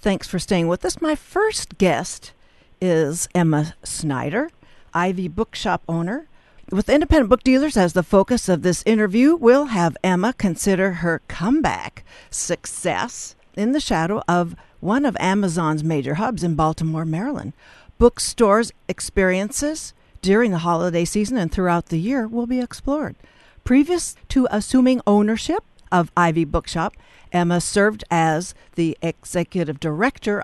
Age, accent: 60-79, American